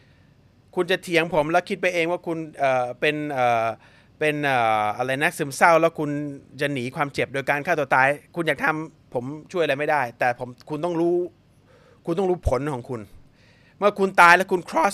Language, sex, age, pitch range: Thai, male, 30-49, 130-175 Hz